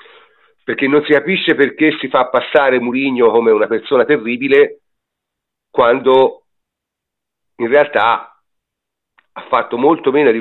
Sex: male